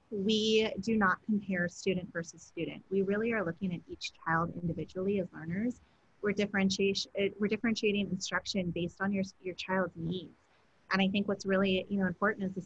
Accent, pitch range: American, 180-205 Hz